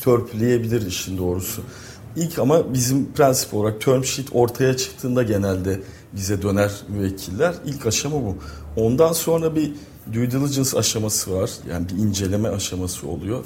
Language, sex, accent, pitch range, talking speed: Turkish, male, native, 100-130 Hz, 140 wpm